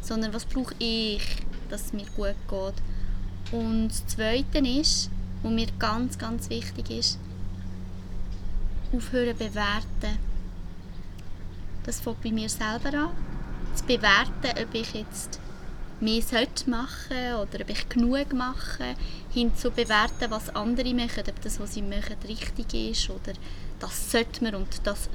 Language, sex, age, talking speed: German, female, 20-39, 140 wpm